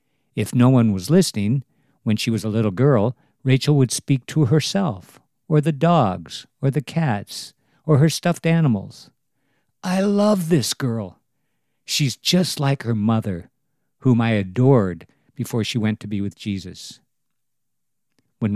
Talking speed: 150 wpm